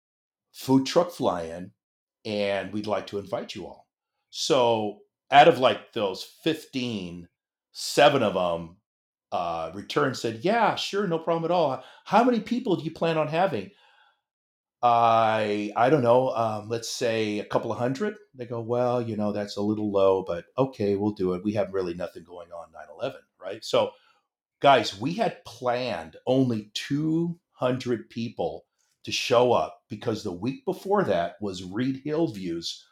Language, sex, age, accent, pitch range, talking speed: English, male, 50-69, American, 105-140 Hz, 165 wpm